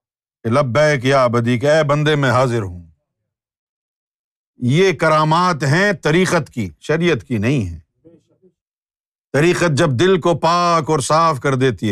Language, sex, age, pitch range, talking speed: Urdu, male, 50-69, 120-190 Hz, 135 wpm